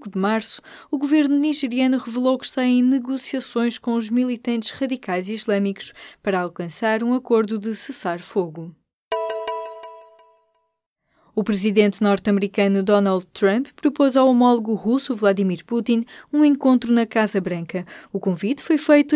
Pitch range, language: 195-255 Hz, Portuguese